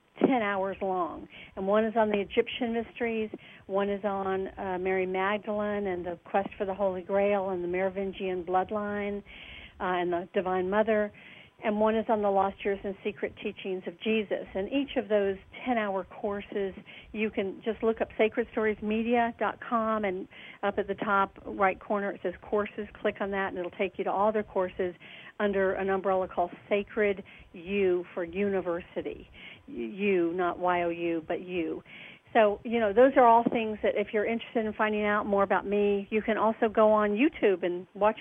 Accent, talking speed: American, 185 wpm